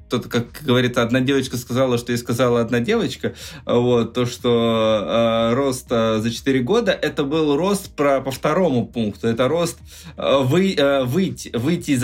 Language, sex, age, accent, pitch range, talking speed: Russian, male, 20-39, native, 115-140 Hz, 180 wpm